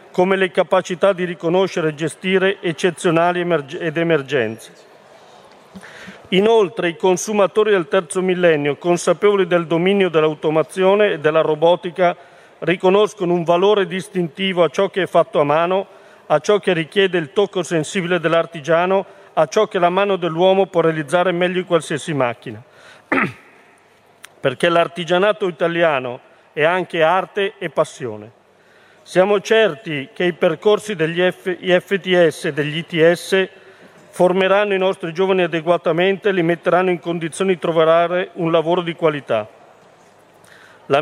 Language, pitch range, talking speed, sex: Italian, 165-190 Hz, 130 wpm, male